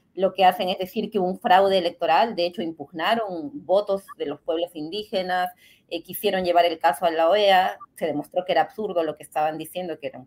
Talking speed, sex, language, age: 220 wpm, female, Spanish, 30-49